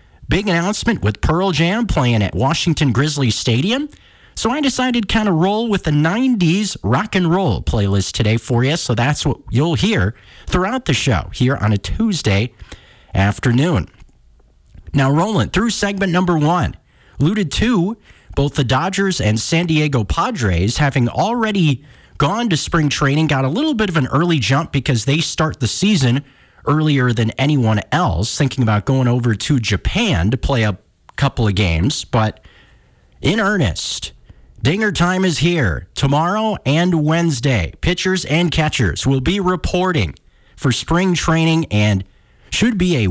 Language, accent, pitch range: English, American, 110-170 Hz